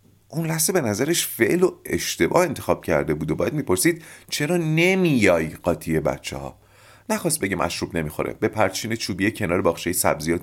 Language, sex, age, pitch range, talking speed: Persian, male, 40-59, 95-125 Hz, 160 wpm